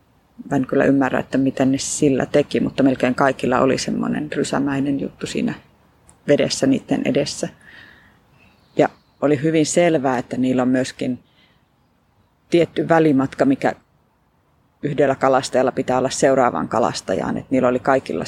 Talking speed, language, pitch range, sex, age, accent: 130 wpm, Finnish, 135-150 Hz, female, 30-49, native